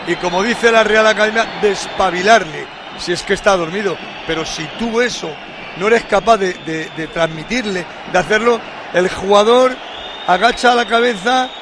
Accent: Spanish